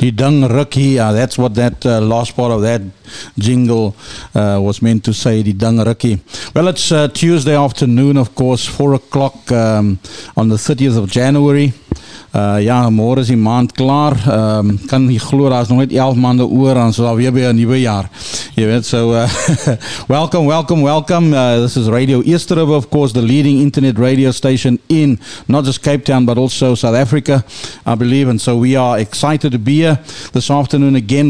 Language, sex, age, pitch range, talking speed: English, male, 50-69, 115-135 Hz, 190 wpm